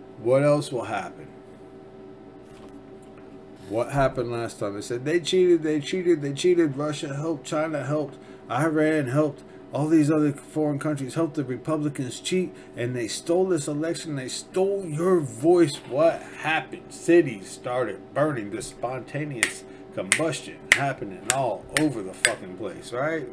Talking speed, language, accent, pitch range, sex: 140 wpm, English, American, 95-140 Hz, male